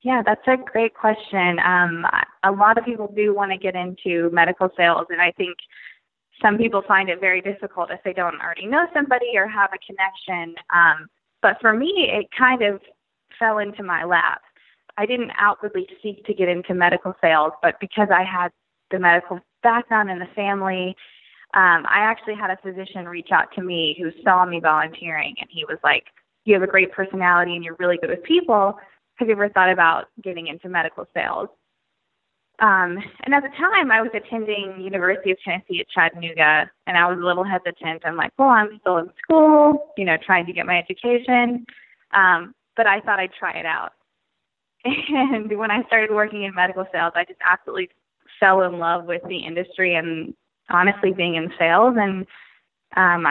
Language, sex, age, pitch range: English, female, 20-39, 175-215 Hz